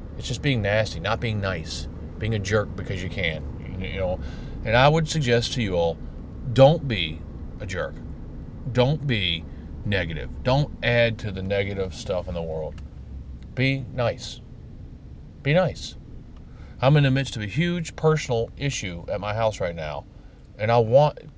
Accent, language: American, English